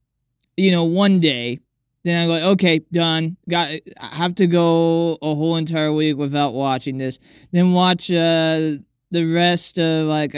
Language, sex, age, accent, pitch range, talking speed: English, male, 20-39, American, 140-185 Hz, 160 wpm